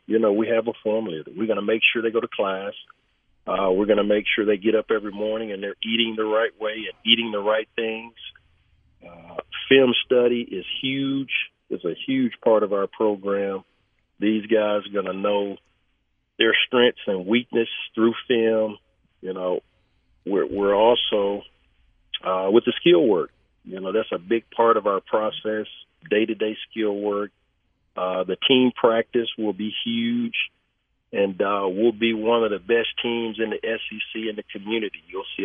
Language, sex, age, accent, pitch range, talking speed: English, male, 40-59, American, 100-115 Hz, 180 wpm